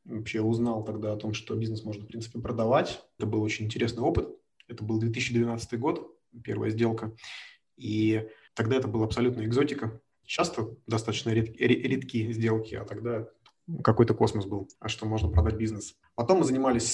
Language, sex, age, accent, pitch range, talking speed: Russian, male, 20-39, native, 110-120 Hz, 165 wpm